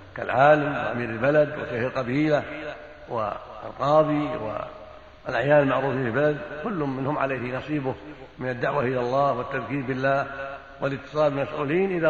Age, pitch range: 60-79, 130-155 Hz